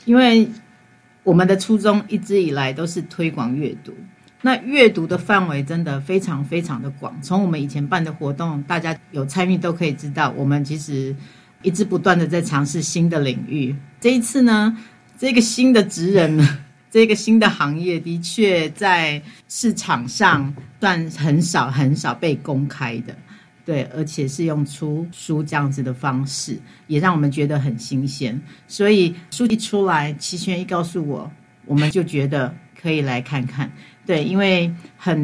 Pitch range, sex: 145-190 Hz, female